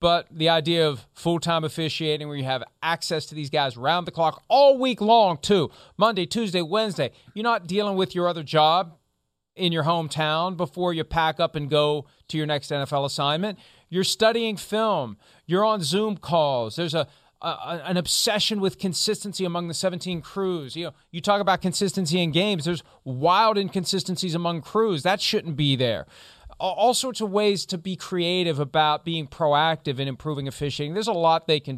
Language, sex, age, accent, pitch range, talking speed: English, male, 40-59, American, 140-185 Hz, 185 wpm